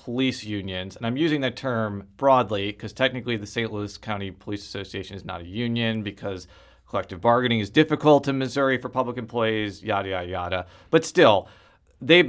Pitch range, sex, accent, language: 100-130 Hz, male, American, English